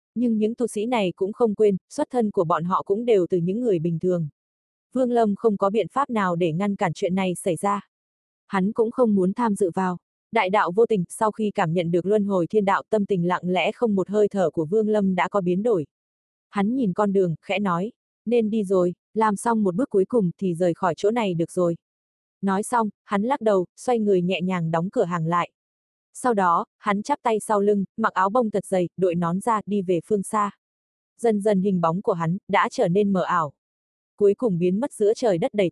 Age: 20-39